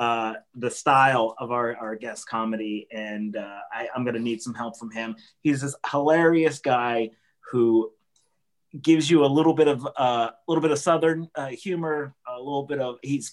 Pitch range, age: 115-155 Hz, 30-49